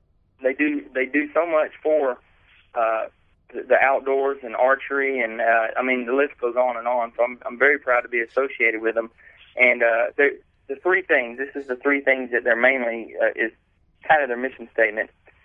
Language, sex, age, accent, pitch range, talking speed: English, male, 20-39, American, 115-135 Hz, 200 wpm